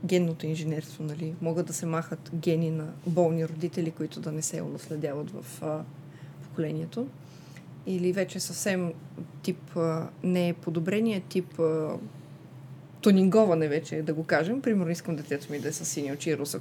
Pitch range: 150-185 Hz